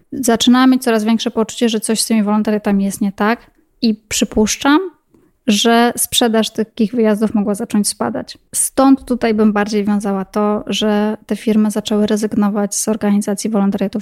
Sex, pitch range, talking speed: female, 210-235 Hz, 155 wpm